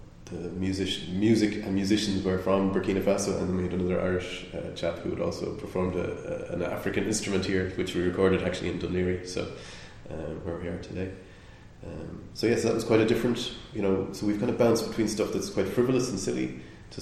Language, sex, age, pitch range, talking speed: English, male, 20-39, 85-100 Hz, 215 wpm